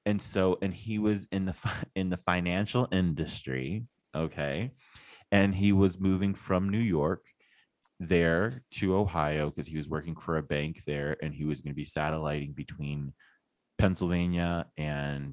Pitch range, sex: 75-100 Hz, male